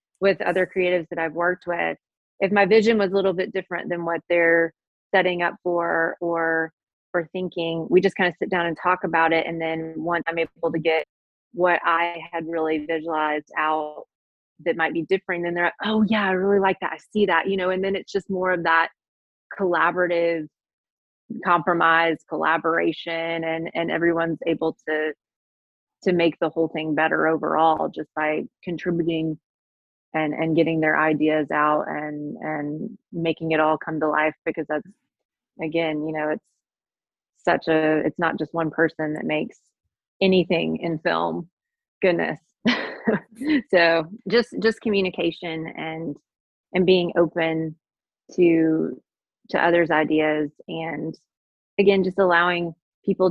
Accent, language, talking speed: American, English, 160 wpm